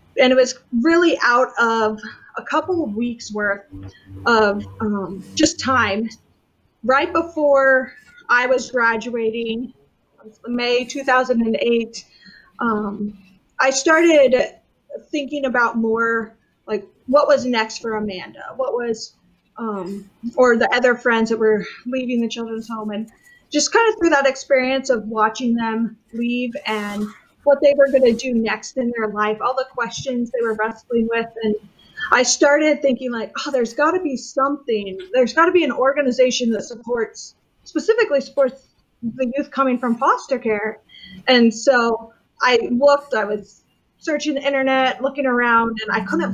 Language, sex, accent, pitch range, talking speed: English, female, American, 220-270 Hz, 150 wpm